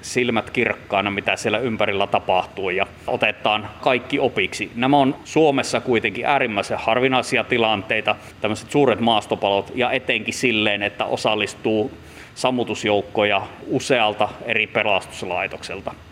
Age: 30-49